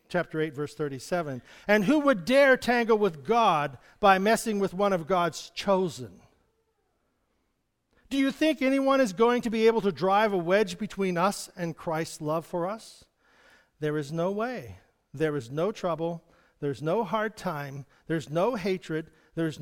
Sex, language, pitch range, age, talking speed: male, English, 160-225 Hz, 50-69, 165 wpm